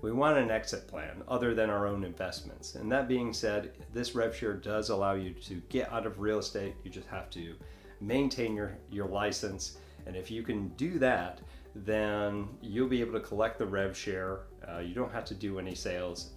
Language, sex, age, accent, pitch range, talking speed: English, male, 40-59, American, 85-110 Hz, 210 wpm